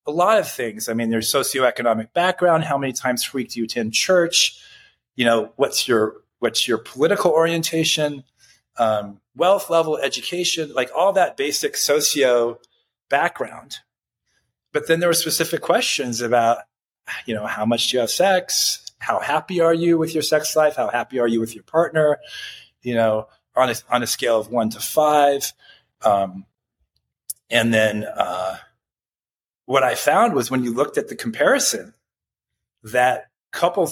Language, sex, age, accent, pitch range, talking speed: English, male, 30-49, American, 120-175 Hz, 165 wpm